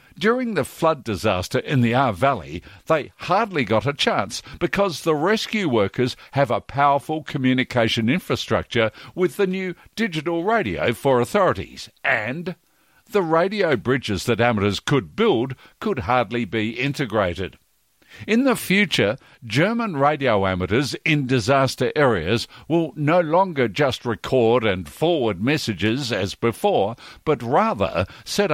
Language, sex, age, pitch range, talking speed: English, male, 60-79, 110-160 Hz, 130 wpm